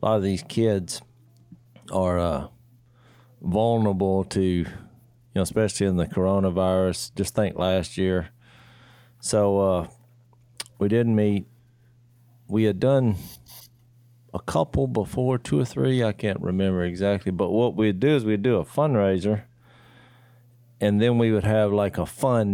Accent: American